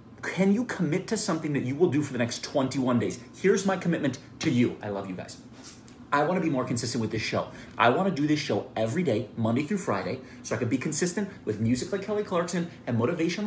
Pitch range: 120-165 Hz